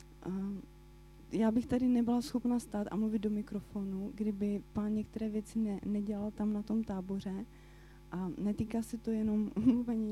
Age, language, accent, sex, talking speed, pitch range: 30-49, Czech, native, female, 155 wpm, 200-230 Hz